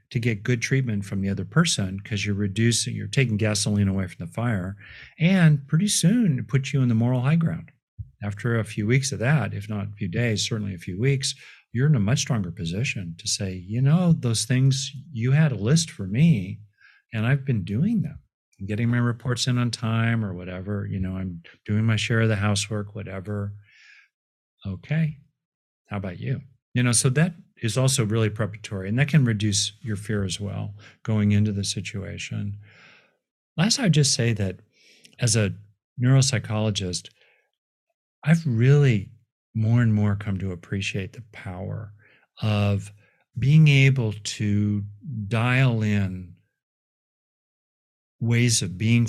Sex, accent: male, American